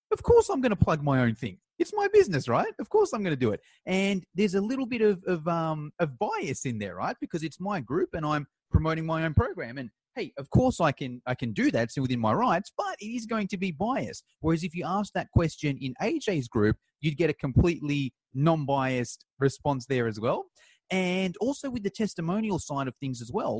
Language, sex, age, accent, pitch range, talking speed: English, male, 30-49, Australian, 135-210 Hz, 235 wpm